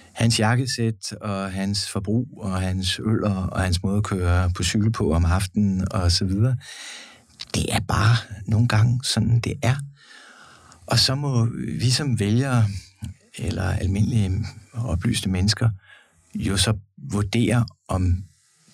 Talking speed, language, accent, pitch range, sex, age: 140 wpm, Danish, native, 100-120 Hz, male, 60-79